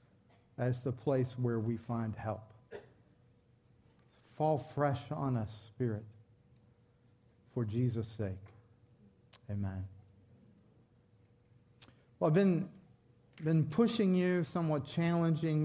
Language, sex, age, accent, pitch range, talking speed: English, male, 40-59, American, 125-170 Hz, 90 wpm